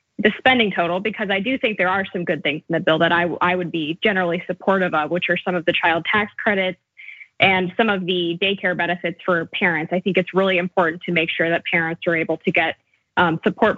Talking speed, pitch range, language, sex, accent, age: 230 wpm, 175-195 Hz, English, female, American, 20-39